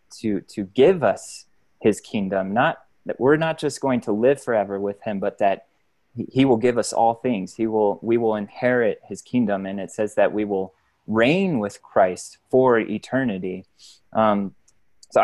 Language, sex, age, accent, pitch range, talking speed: English, male, 20-39, American, 100-115 Hz, 180 wpm